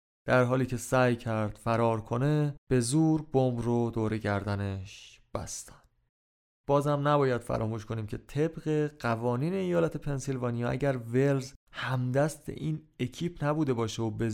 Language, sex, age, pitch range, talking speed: Persian, male, 30-49, 115-140 Hz, 135 wpm